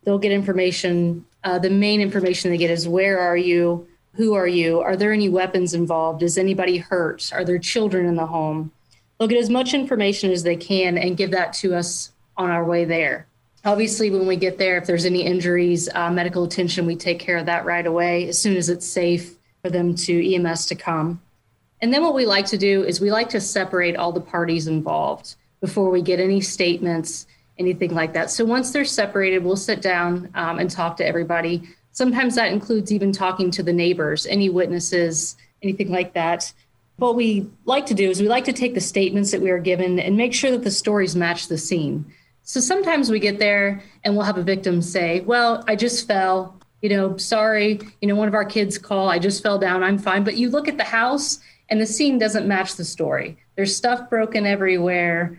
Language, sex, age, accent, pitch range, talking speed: English, female, 30-49, American, 175-210 Hz, 215 wpm